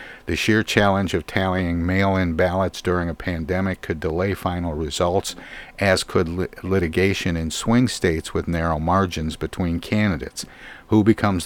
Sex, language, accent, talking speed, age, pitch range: male, English, American, 140 wpm, 50-69, 85-105 Hz